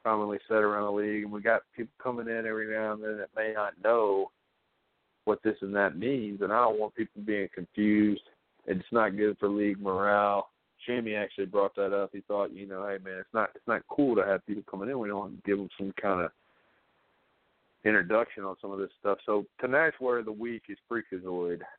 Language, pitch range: English, 100-115 Hz